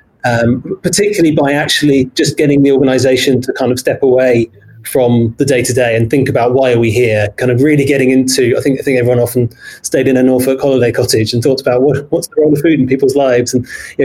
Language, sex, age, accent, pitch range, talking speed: English, male, 20-39, British, 115-135 Hz, 240 wpm